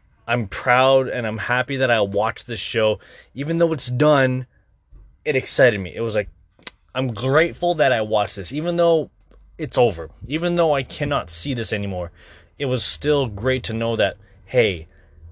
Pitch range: 105-135 Hz